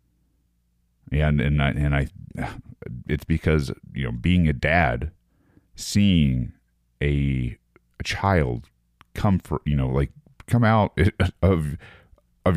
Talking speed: 120 wpm